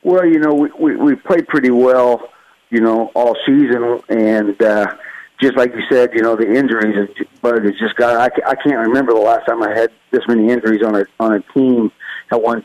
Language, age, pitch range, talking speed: English, 50-69, 110-120 Hz, 220 wpm